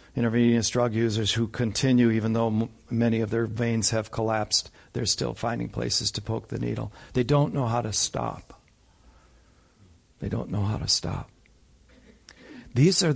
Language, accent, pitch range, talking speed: English, American, 110-155 Hz, 160 wpm